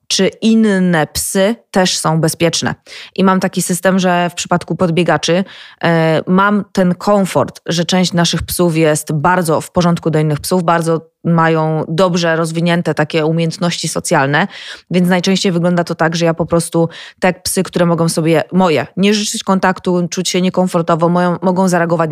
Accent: native